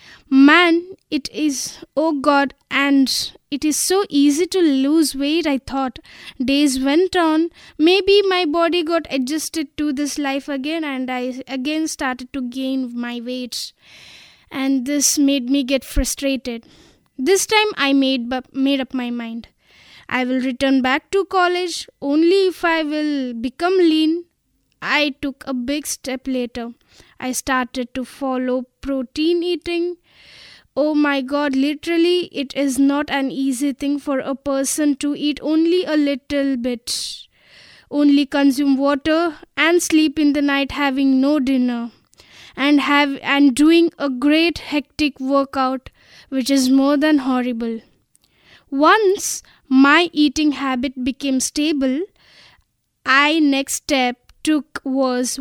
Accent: native